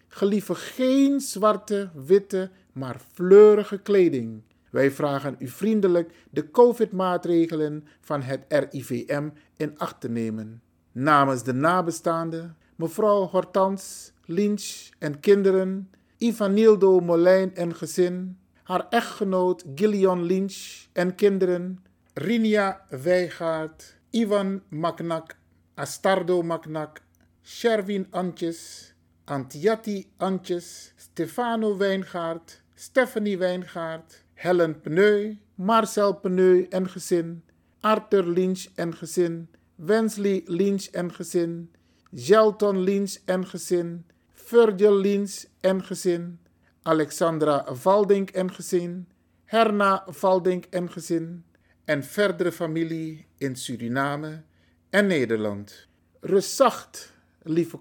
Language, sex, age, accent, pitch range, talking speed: Dutch, male, 50-69, Dutch, 155-195 Hz, 95 wpm